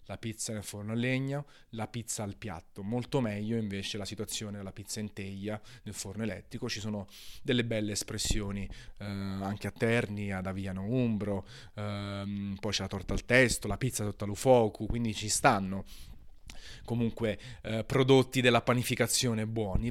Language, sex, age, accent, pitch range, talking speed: Italian, male, 30-49, native, 105-120 Hz, 165 wpm